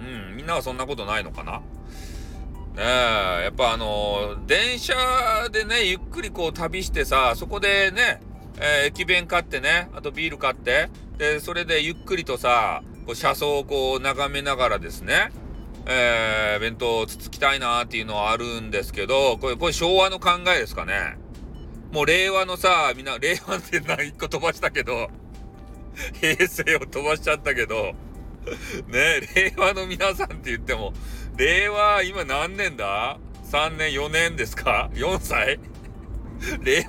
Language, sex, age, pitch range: Japanese, male, 40-59, 115-180 Hz